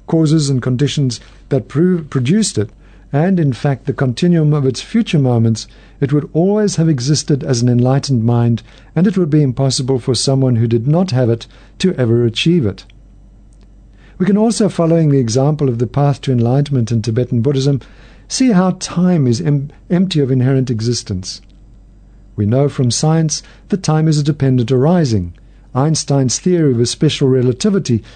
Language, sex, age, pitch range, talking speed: English, male, 50-69, 120-160 Hz, 165 wpm